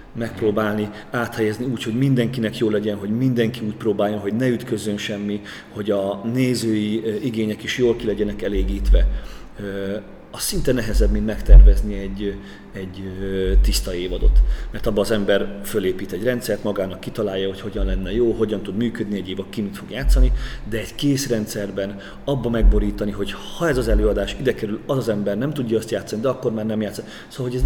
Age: 30-49